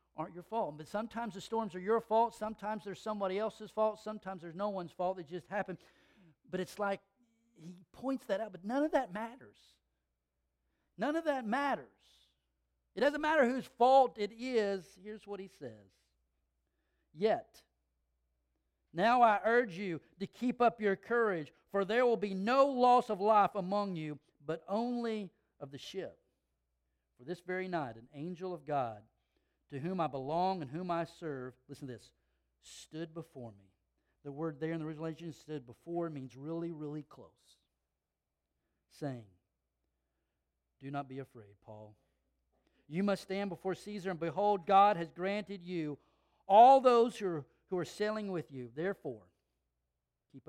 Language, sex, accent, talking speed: English, male, American, 165 wpm